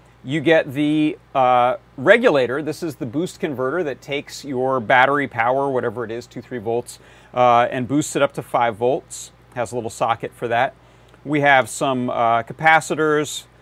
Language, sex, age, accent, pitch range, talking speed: English, male, 40-59, American, 120-145 Hz, 175 wpm